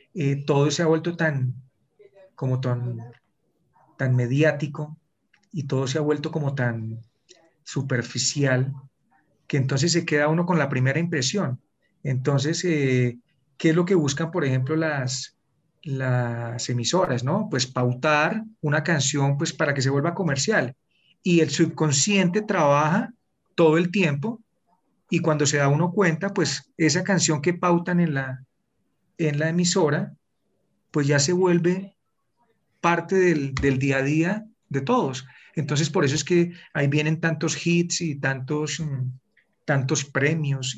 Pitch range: 135-175 Hz